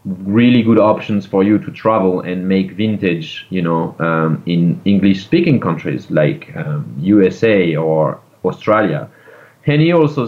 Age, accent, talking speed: 30-49, French, 145 wpm